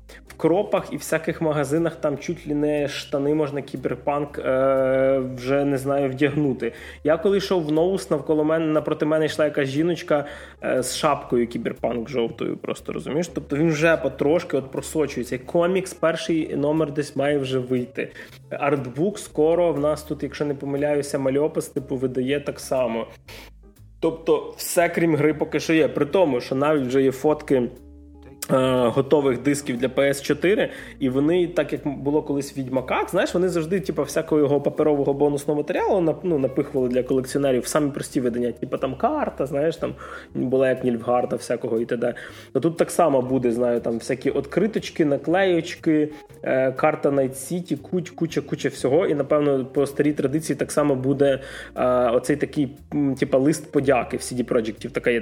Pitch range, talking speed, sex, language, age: 135-160 Hz, 160 wpm, male, Ukrainian, 20-39